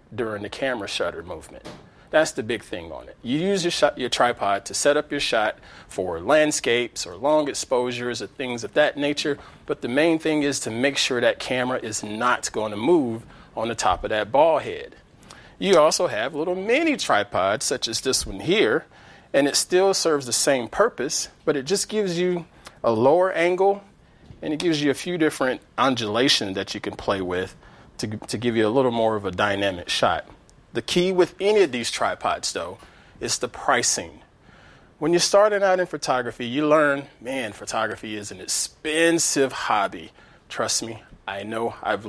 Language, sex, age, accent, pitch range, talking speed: English, male, 40-59, American, 115-165 Hz, 190 wpm